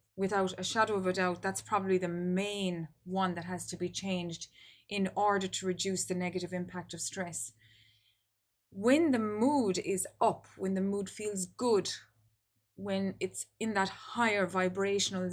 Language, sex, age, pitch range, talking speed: English, female, 20-39, 170-200 Hz, 160 wpm